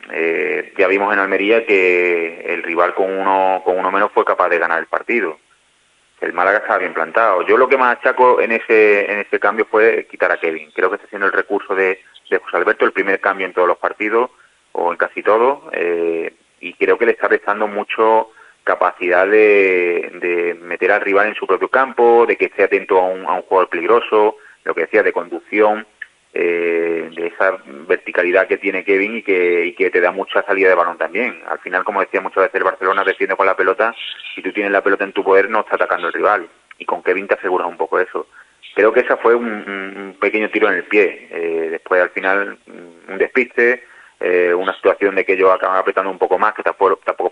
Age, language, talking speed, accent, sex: 30-49, Spanish, 220 wpm, Spanish, male